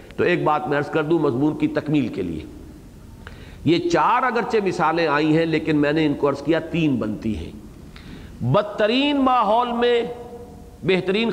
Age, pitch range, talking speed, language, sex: 50-69, 145-220 Hz, 170 wpm, English, male